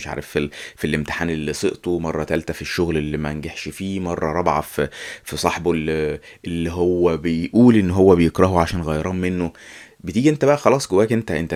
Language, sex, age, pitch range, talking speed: Arabic, male, 20-39, 80-105 Hz, 190 wpm